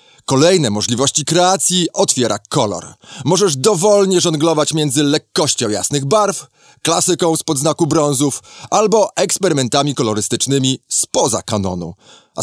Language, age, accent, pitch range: Polish, 30-49, native, 130-180 Hz